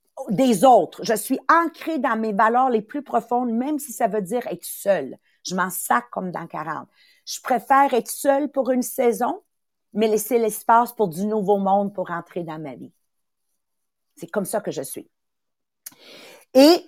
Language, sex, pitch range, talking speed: English, female, 210-290 Hz, 180 wpm